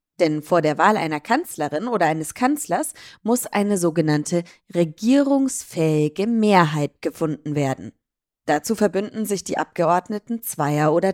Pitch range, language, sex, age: 150-210 Hz, German, female, 20-39